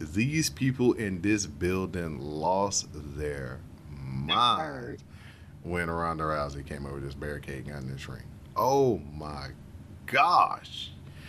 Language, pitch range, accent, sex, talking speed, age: English, 75-100 Hz, American, male, 115 wpm, 30-49